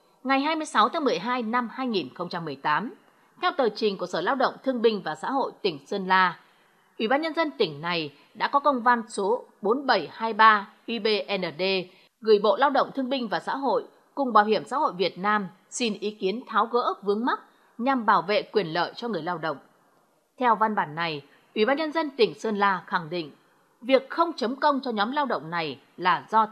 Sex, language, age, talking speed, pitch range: female, Vietnamese, 20-39, 205 wpm, 190-270 Hz